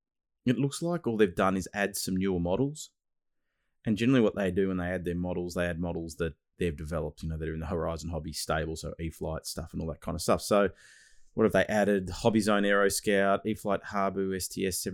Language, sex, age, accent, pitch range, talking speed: English, male, 20-39, Australian, 90-100 Hz, 225 wpm